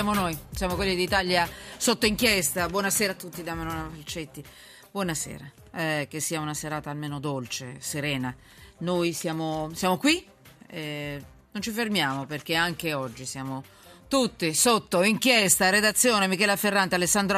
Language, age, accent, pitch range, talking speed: Italian, 40-59, native, 150-200 Hz, 140 wpm